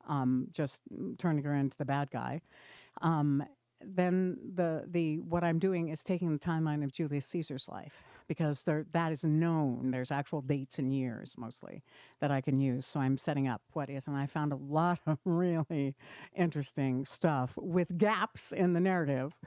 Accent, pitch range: American, 135-165 Hz